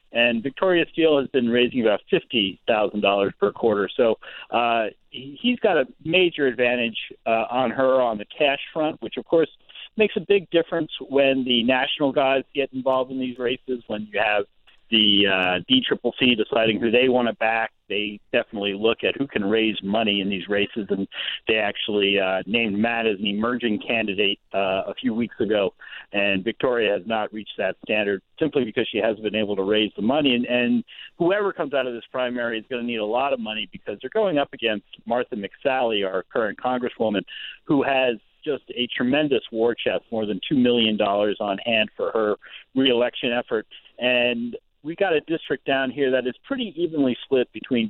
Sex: male